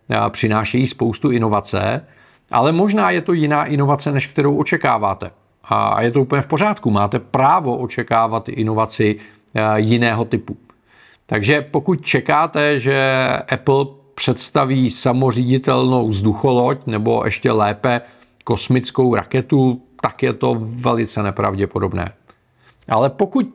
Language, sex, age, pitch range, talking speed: Czech, male, 40-59, 115-145 Hz, 110 wpm